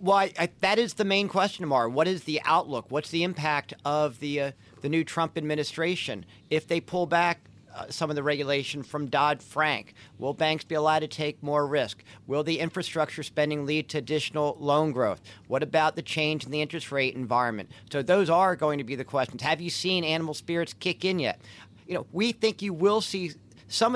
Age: 40-59